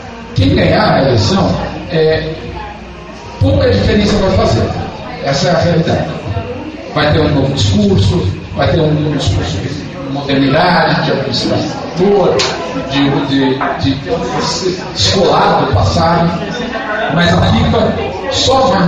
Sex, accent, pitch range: male, Brazilian, 135-185 Hz